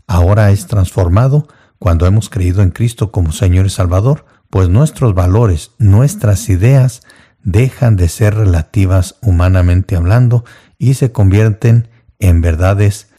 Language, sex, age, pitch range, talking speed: Spanish, male, 50-69, 90-115 Hz, 125 wpm